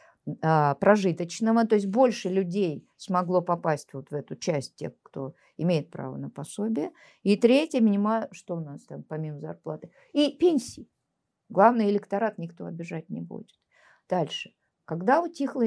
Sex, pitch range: female, 165-230 Hz